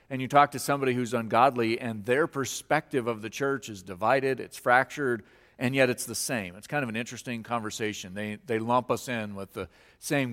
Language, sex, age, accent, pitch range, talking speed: English, male, 40-59, American, 110-135 Hz, 210 wpm